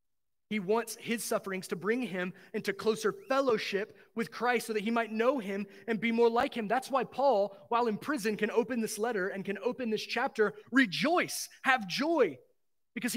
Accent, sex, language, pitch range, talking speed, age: American, male, English, 190-245 Hz, 190 wpm, 30-49